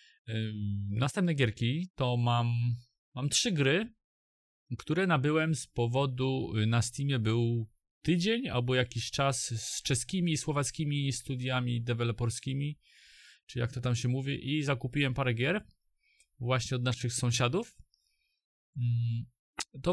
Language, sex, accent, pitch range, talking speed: Polish, male, native, 120-145 Hz, 115 wpm